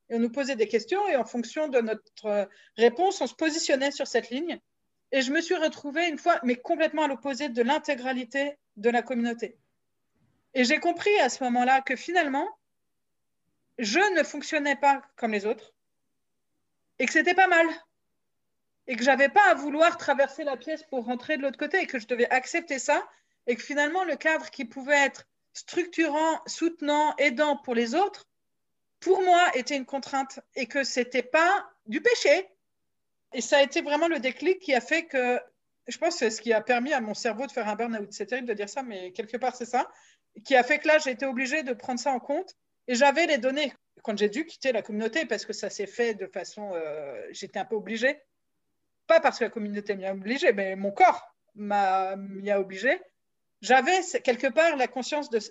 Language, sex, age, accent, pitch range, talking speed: French, female, 40-59, French, 240-315 Hz, 210 wpm